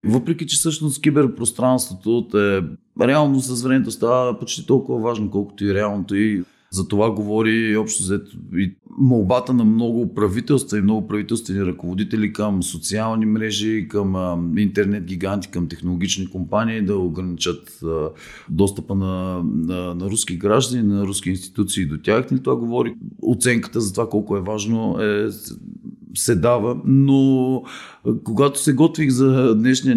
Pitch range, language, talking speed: 100-140 Hz, Bulgarian, 140 wpm